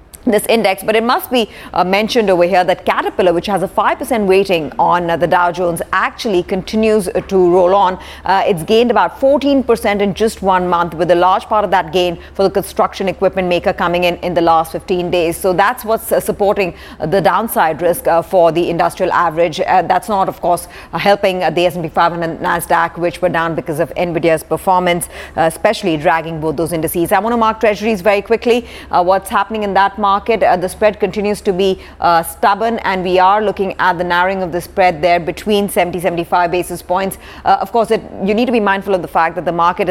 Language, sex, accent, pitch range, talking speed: English, female, Indian, 170-200 Hz, 220 wpm